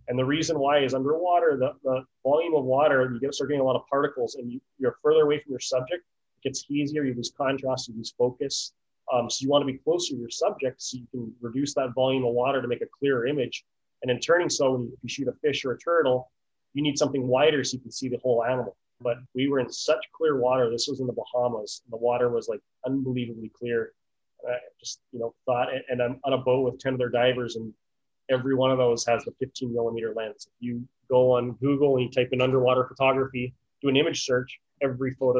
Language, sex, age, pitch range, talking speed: English, male, 30-49, 125-140 Hz, 235 wpm